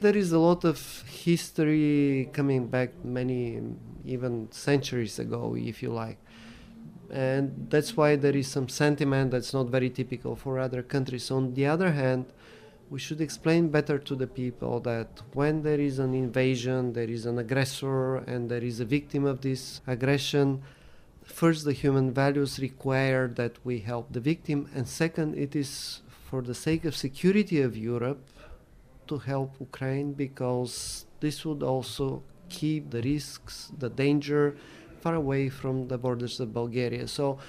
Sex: male